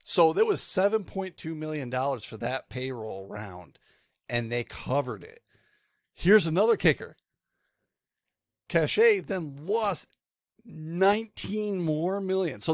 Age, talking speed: 40-59, 110 wpm